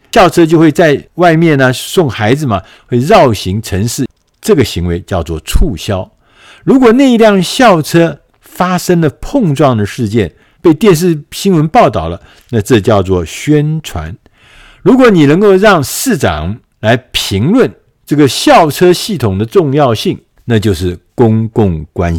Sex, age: male, 50-69